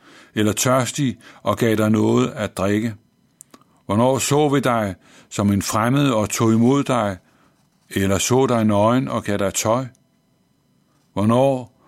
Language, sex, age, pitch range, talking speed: Danish, male, 60-79, 105-130 Hz, 140 wpm